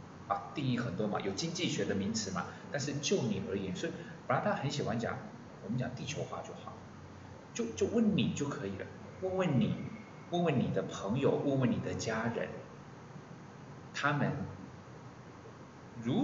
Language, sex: Chinese, male